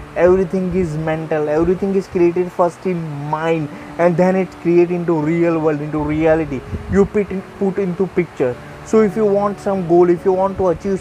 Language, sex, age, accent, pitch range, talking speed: English, male, 20-39, Indian, 170-195 Hz, 190 wpm